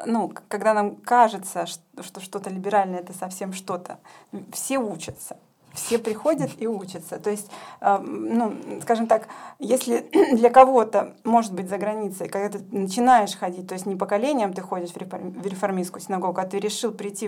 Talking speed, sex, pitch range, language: 160 wpm, female, 190-230 Hz, Russian